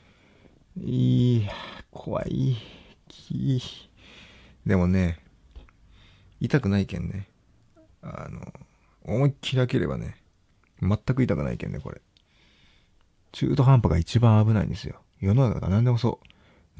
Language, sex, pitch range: Japanese, male, 90-115 Hz